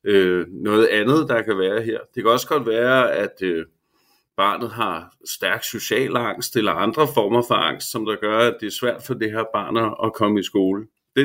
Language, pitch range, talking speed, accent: Danish, 100-125 Hz, 215 wpm, native